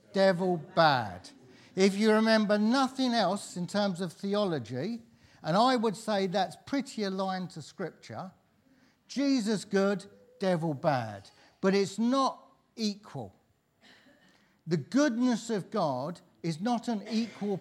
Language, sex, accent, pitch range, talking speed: English, male, British, 160-215 Hz, 125 wpm